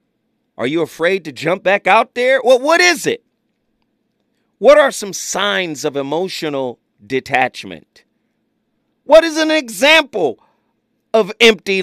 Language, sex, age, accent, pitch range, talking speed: English, male, 40-59, American, 175-270 Hz, 125 wpm